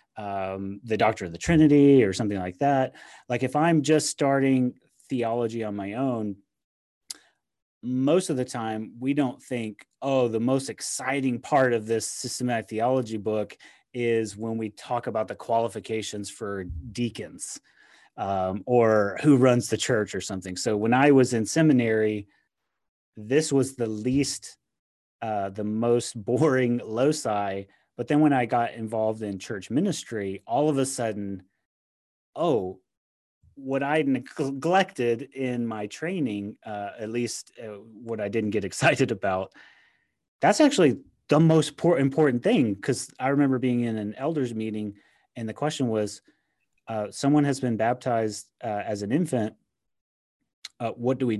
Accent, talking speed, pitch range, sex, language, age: American, 150 wpm, 105-135 Hz, male, English, 30-49